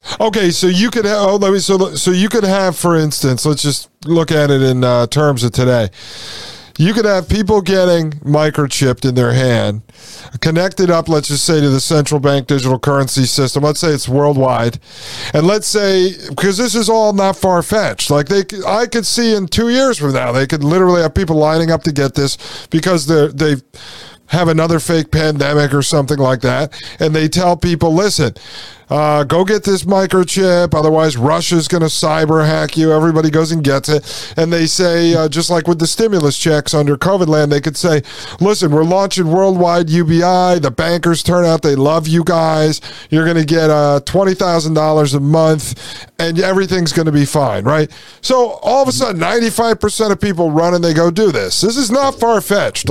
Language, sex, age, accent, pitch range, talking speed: English, male, 40-59, American, 145-185 Hz, 195 wpm